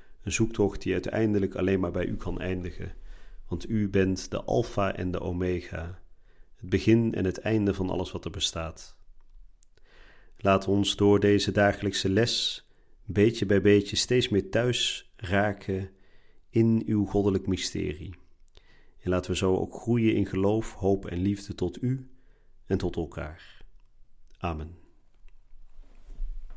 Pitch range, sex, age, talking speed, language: 90-115 Hz, male, 40-59, 140 wpm, Dutch